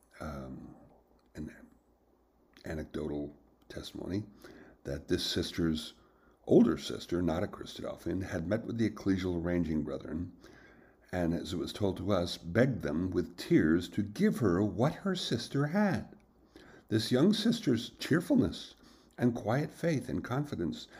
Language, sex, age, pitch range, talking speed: English, male, 60-79, 80-120 Hz, 130 wpm